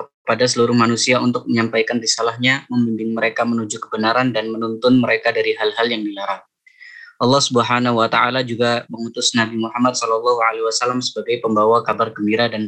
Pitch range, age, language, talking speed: 110-125 Hz, 20-39, Indonesian, 145 wpm